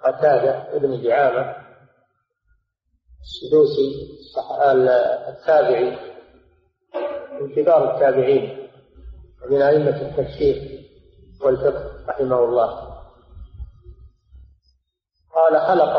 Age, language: 50-69, Arabic